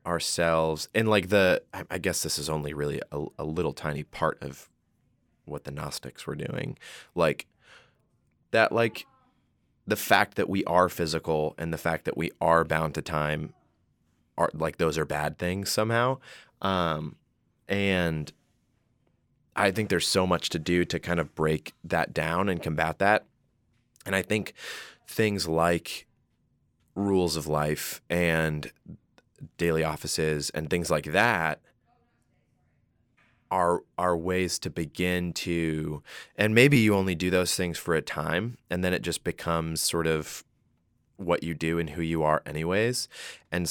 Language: English